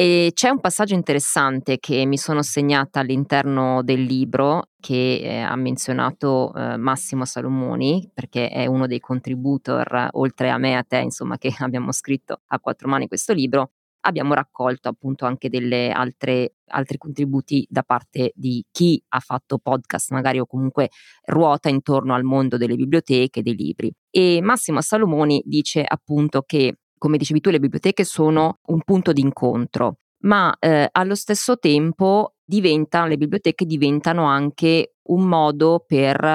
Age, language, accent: 20-39, Italian, native